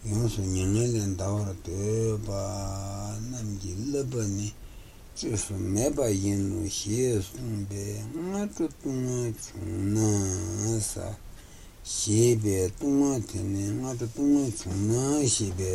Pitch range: 100-125 Hz